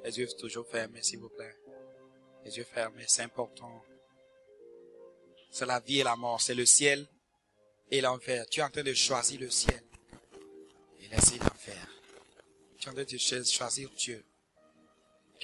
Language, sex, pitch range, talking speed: English, male, 100-130 Hz, 165 wpm